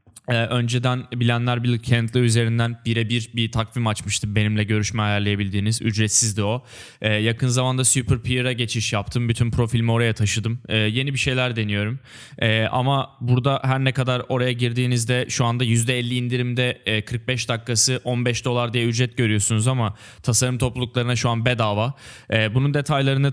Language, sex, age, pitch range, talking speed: Turkish, male, 20-39, 110-125 Hz, 150 wpm